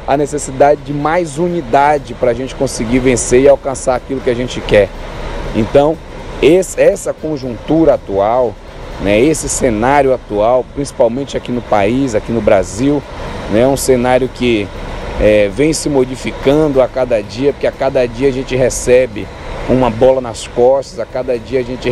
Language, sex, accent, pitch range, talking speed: Portuguese, male, Brazilian, 120-145 Hz, 160 wpm